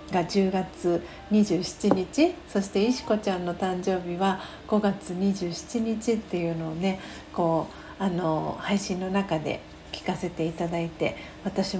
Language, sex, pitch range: Japanese, female, 175-205 Hz